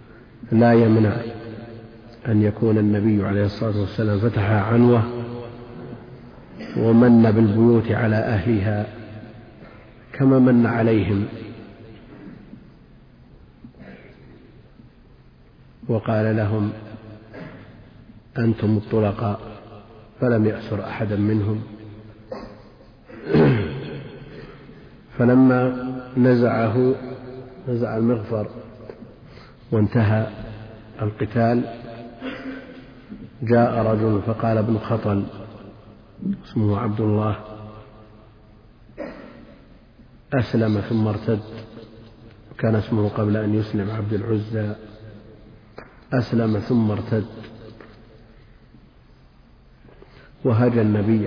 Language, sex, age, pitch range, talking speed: Arabic, male, 50-69, 105-115 Hz, 65 wpm